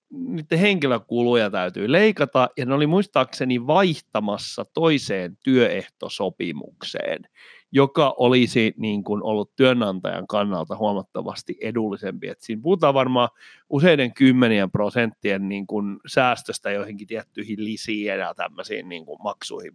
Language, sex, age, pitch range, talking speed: Finnish, male, 30-49, 110-160 Hz, 110 wpm